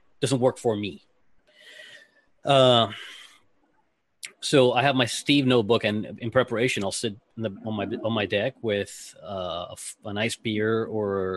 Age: 30-49